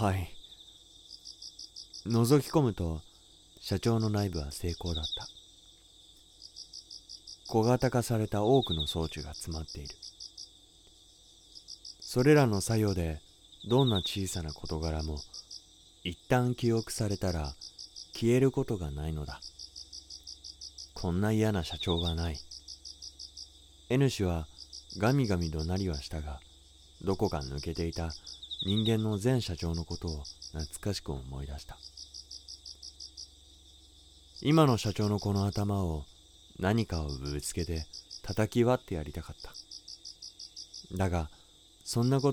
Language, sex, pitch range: Japanese, male, 75-100 Hz